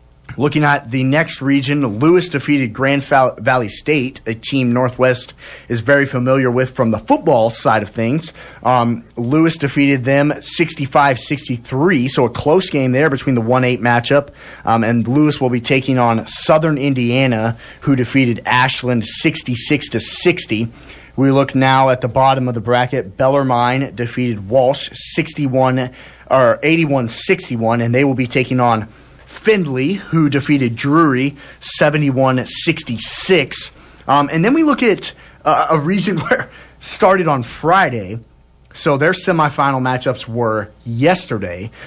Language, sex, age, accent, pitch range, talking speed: English, male, 30-49, American, 120-145 Hz, 140 wpm